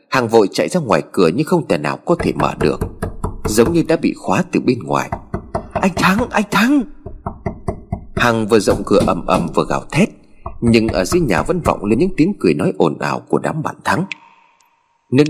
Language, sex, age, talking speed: Vietnamese, male, 30-49, 210 wpm